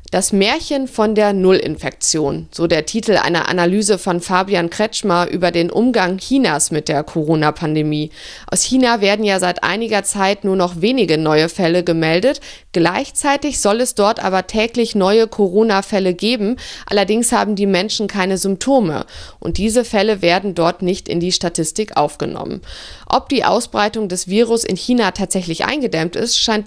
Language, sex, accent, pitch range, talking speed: German, female, German, 180-225 Hz, 155 wpm